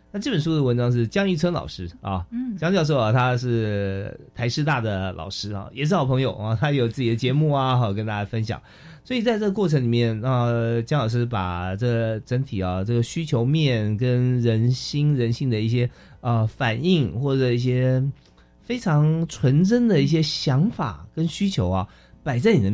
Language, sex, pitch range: Chinese, male, 100-135 Hz